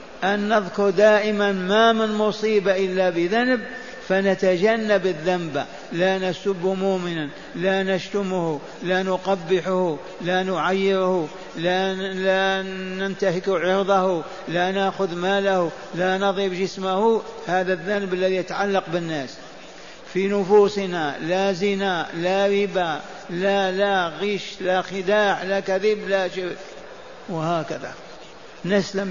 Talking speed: 105 wpm